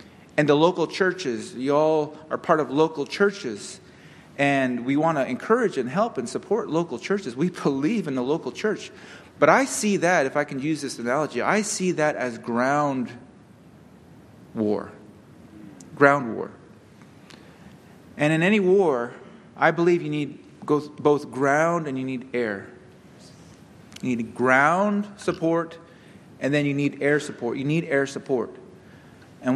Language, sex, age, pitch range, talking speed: English, male, 30-49, 140-195 Hz, 150 wpm